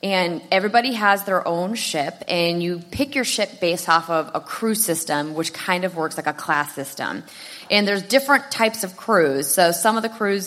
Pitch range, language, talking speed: 155-200 Hz, English, 205 wpm